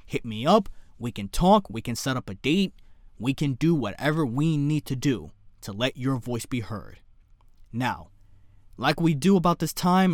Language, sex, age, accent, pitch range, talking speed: English, male, 20-39, American, 100-155 Hz, 195 wpm